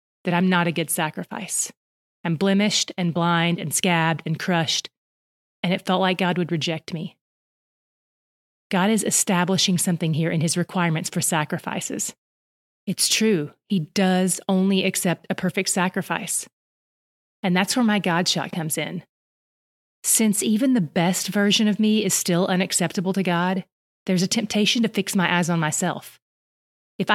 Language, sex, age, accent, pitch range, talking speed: English, female, 30-49, American, 175-210 Hz, 155 wpm